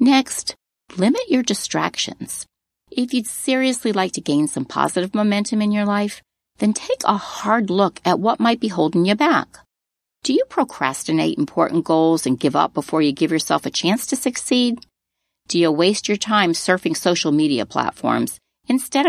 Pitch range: 160-230 Hz